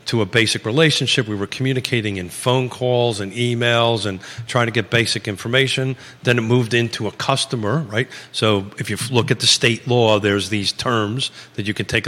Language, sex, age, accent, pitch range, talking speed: English, male, 40-59, American, 105-130 Hz, 200 wpm